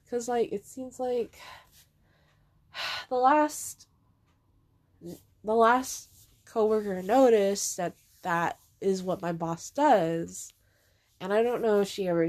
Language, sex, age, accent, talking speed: English, female, 20-39, American, 120 wpm